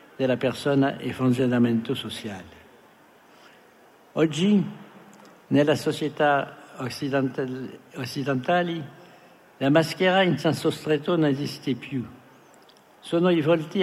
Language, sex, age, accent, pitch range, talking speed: Italian, male, 60-79, French, 130-155 Hz, 90 wpm